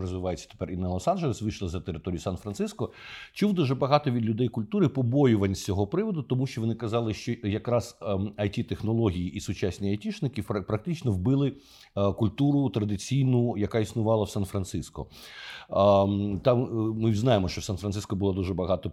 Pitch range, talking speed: 100-130 Hz, 145 wpm